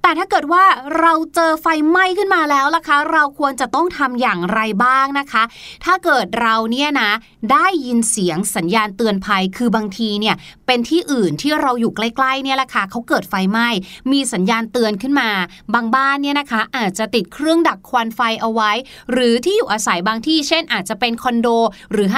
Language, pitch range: Thai, 220-315 Hz